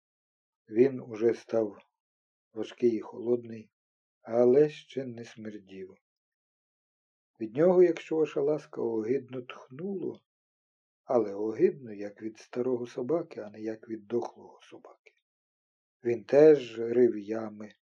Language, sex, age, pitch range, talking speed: Ukrainian, male, 50-69, 110-135 Hz, 110 wpm